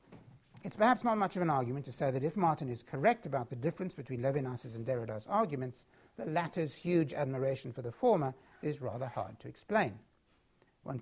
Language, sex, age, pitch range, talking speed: English, male, 60-79, 120-155 Hz, 190 wpm